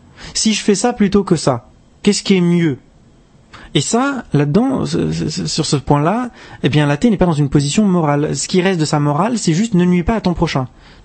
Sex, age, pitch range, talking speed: male, 30-49, 135-185 Hz, 215 wpm